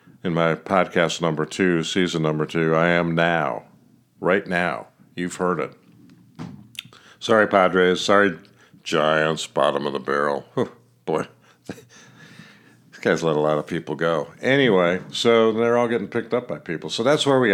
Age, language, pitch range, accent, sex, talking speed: 50-69, English, 80-100 Hz, American, male, 155 wpm